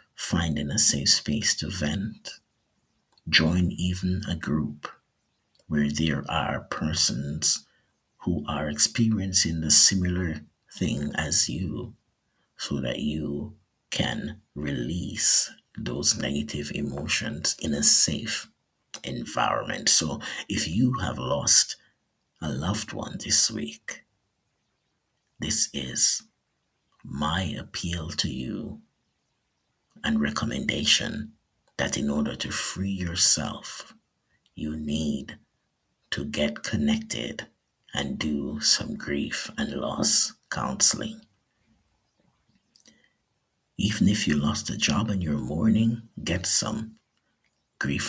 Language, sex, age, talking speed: English, male, 50-69, 100 wpm